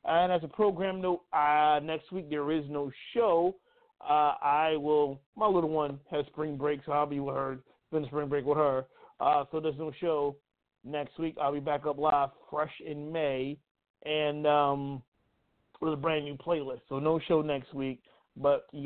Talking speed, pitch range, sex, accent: 190 wpm, 140-160 Hz, male, American